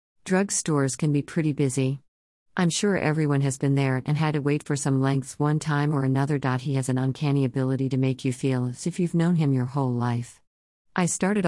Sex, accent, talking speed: female, American, 220 wpm